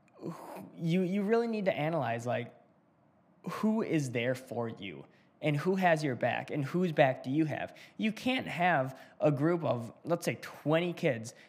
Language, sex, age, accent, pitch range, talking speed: English, male, 10-29, American, 130-165 Hz, 170 wpm